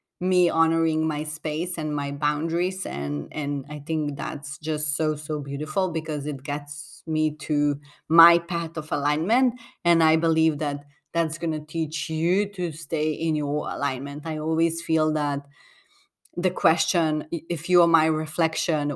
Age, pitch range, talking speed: 30-49, 150-170 Hz, 160 wpm